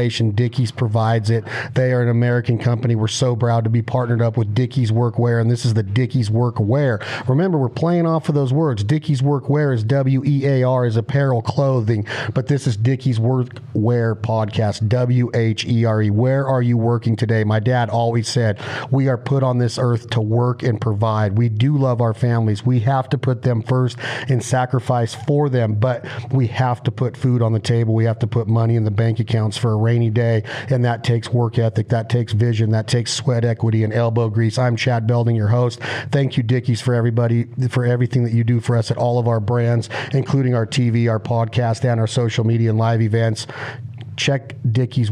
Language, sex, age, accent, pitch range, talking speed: English, male, 40-59, American, 115-125 Hz, 200 wpm